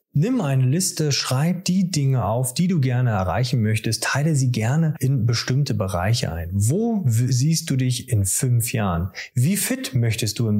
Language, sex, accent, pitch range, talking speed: German, male, German, 110-140 Hz, 175 wpm